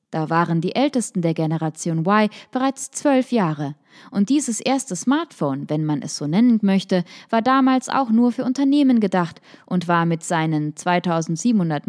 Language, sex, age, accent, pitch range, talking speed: German, female, 20-39, German, 170-245 Hz, 160 wpm